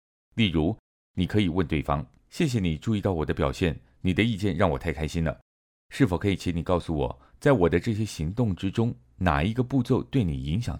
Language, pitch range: Chinese, 75-105 Hz